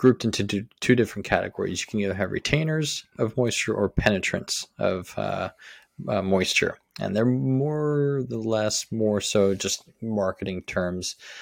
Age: 20-39